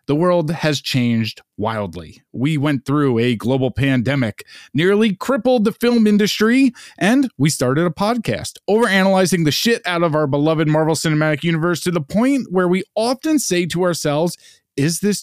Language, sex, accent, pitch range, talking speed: English, male, American, 125-180 Hz, 165 wpm